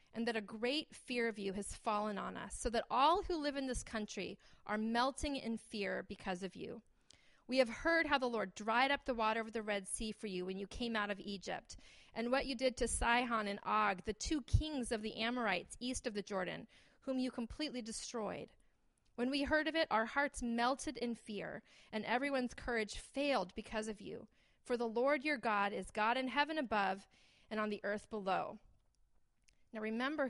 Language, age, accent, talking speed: English, 30-49, American, 205 wpm